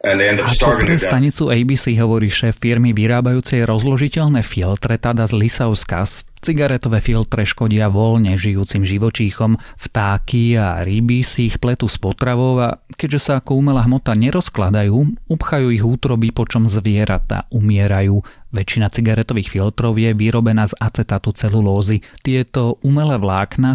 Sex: male